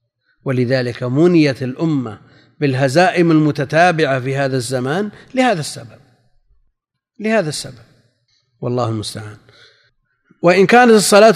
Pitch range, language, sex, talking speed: 125-175 Hz, Arabic, male, 90 wpm